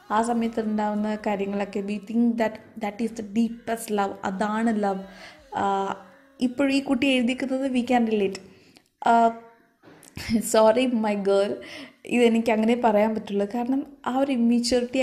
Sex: female